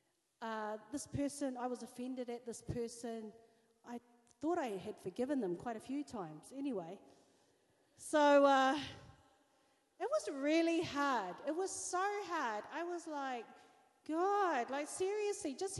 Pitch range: 215-305 Hz